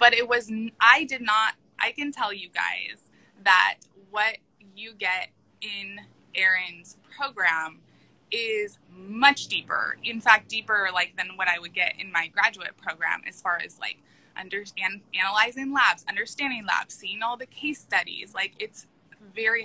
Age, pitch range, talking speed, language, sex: 20-39, 195-245 Hz, 155 wpm, English, female